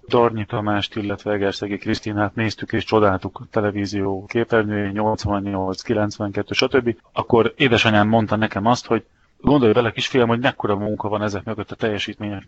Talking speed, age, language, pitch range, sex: 145 wpm, 30-49, Hungarian, 100-115 Hz, male